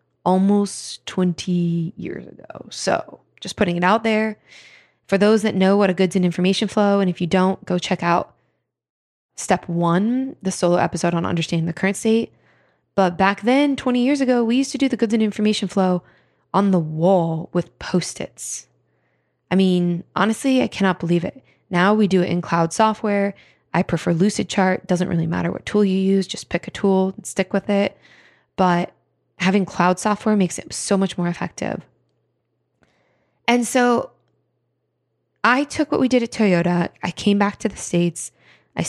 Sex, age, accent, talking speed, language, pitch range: female, 20-39, American, 175 wpm, English, 175-210 Hz